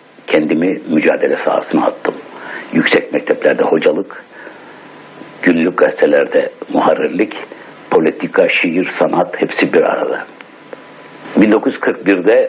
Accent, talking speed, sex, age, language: native, 80 wpm, male, 60-79, Turkish